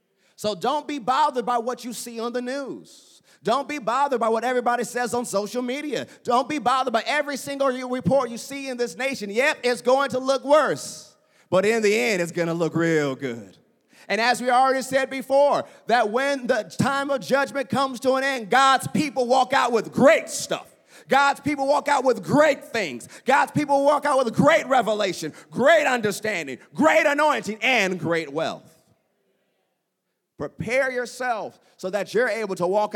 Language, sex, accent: English, male, American